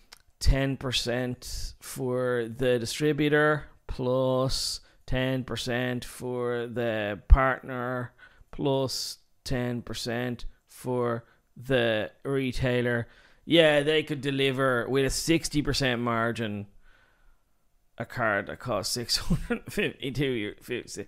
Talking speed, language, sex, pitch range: 75 wpm, English, male, 120-145 Hz